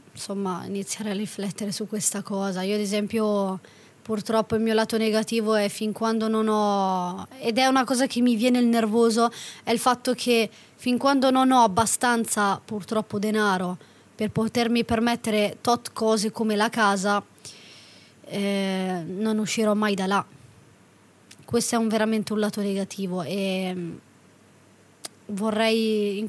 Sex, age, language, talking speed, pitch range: female, 20-39, Italian, 145 wpm, 205-230 Hz